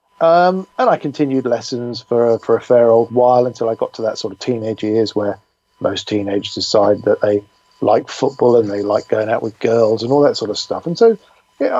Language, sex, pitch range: English, male, 125-160 Hz